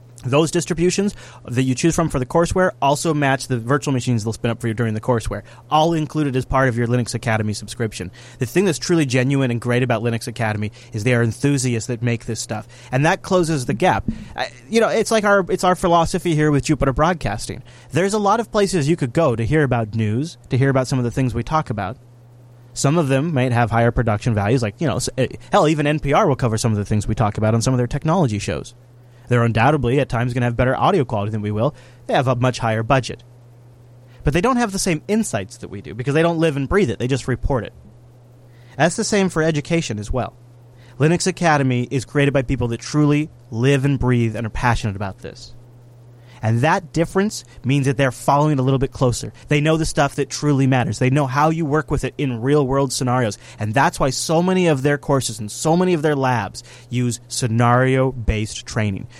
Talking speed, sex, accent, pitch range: 230 wpm, male, American, 120-150 Hz